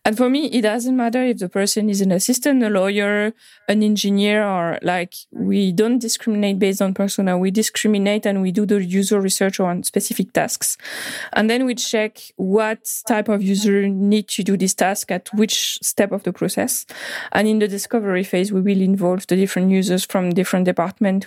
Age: 20-39